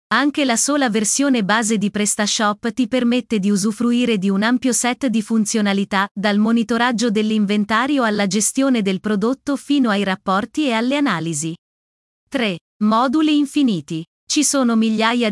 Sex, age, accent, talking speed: female, 30-49, native, 140 wpm